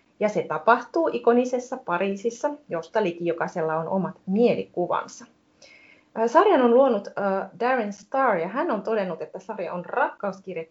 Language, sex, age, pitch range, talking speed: Finnish, female, 30-49, 175-240 Hz, 140 wpm